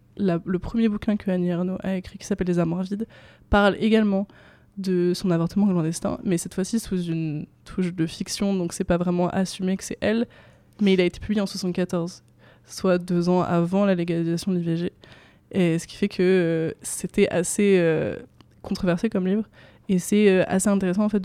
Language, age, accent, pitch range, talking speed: French, 20-39, French, 175-200 Hz, 205 wpm